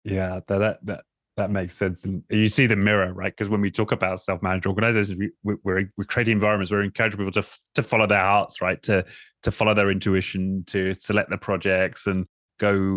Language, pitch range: English, 95-110 Hz